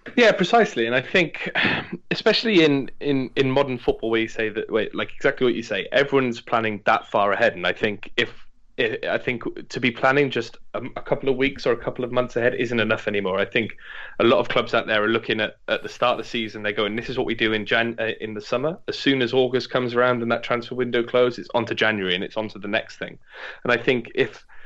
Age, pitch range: 20-39, 110-140 Hz